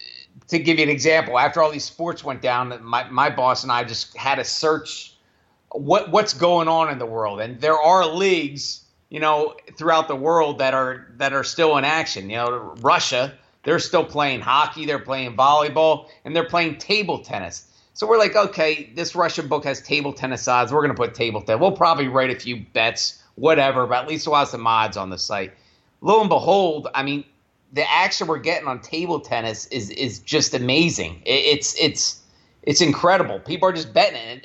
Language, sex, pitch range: English, male, 135-170 Hz